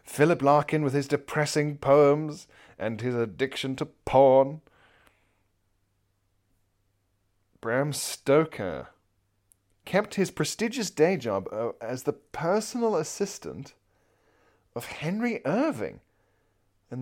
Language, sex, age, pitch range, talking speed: English, male, 30-49, 100-145 Hz, 90 wpm